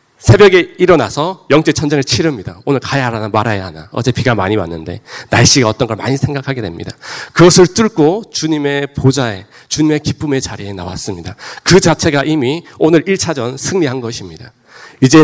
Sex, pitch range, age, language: male, 115-160 Hz, 40-59, Korean